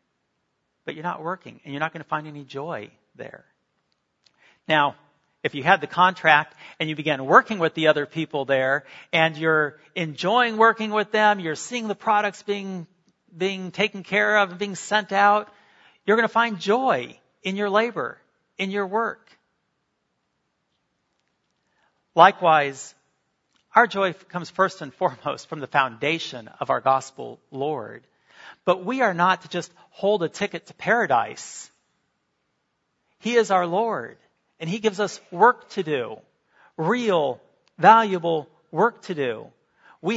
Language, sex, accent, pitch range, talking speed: English, male, American, 150-205 Hz, 150 wpm